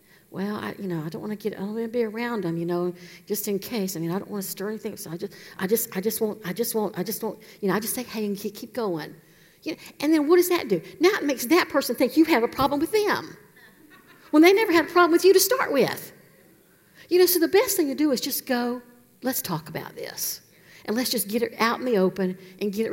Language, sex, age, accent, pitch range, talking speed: English, female, 60-79, American, 190-255 Hz, 290 wpm